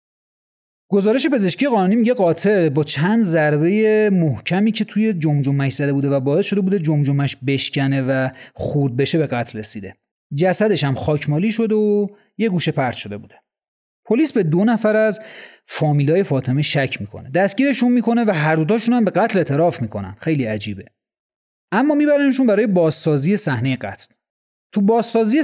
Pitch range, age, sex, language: 140-205 Hz, 30-49, male, Persian